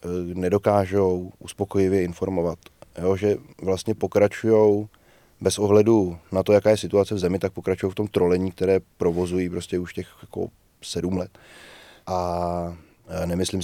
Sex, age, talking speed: male, 20-39, 130 wpm